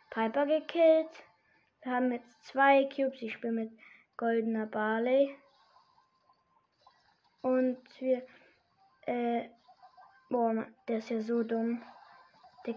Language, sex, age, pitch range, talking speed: German, female, 20-39, 240-275 Hz, 105 wpm